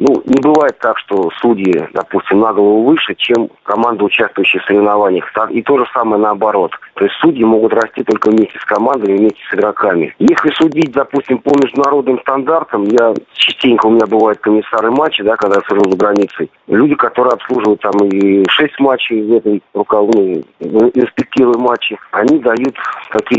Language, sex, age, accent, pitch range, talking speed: Russian, male, 50-69, native, 105-135 Hz, 170 wpm